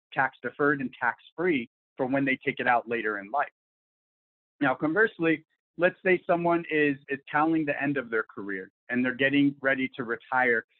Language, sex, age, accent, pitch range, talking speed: English, male, 30-49, American, 135-160 Hz, 170 wpm